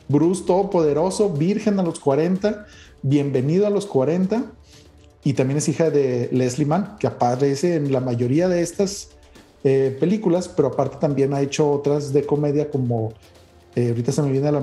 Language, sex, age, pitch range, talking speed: Spanish, male, 40-59, 135-185 Hz, 170 wpm